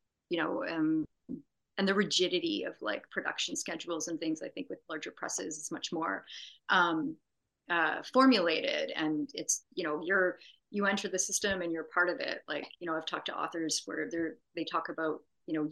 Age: 30-49